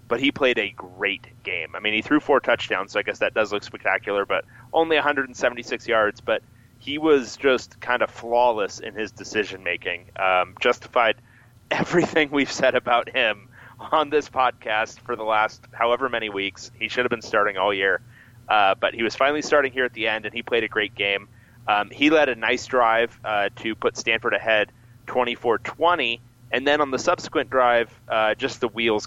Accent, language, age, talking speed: American, English, 30-49, 190 wpm